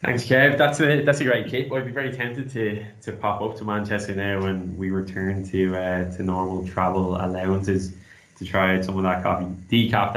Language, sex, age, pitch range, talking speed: English, male, 10-29, 100-110 Hz, 205 wpm